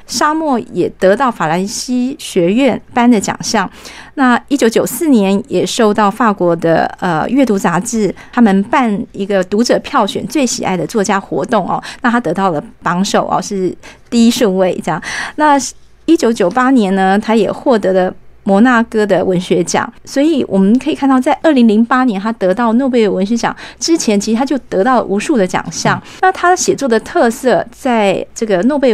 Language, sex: Chinese, female